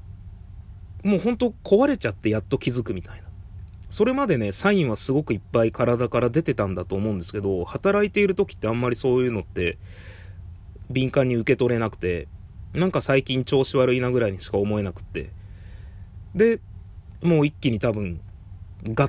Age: 30-49